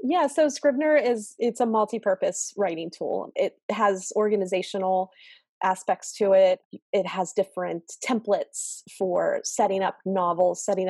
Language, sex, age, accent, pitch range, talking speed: English, female, 20-39, American, 180-220 Hz, 130 wpm